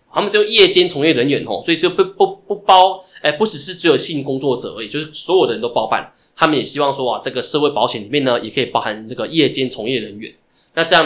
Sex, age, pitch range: male, 20-39, 125-160 Hz